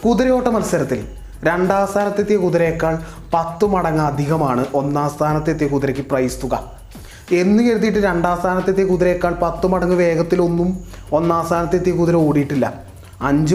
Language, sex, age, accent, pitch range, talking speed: Malayalam, male, 20-39, native, 125-175 Hz, 115 wpm